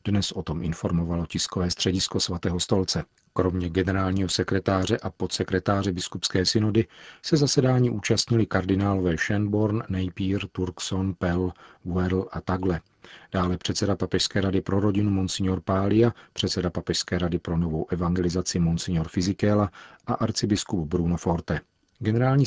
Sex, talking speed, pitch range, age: male, 125 wpm, 90-105 Hz, 40-59